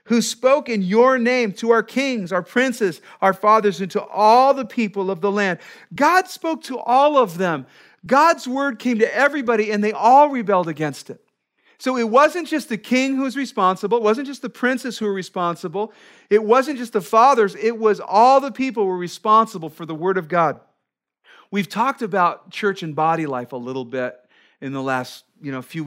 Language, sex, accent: English, male, American